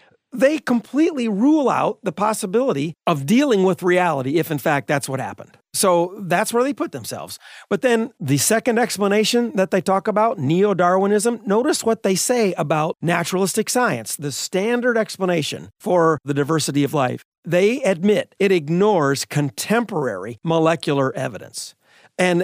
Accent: American